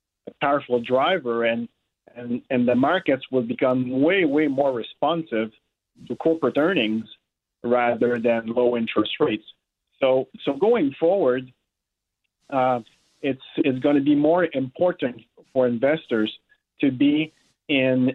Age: 40-59